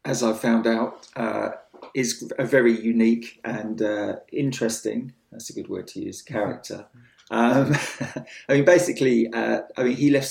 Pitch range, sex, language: 110-125 Hz, male, English